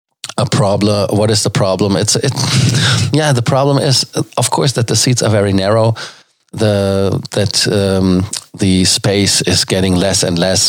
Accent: German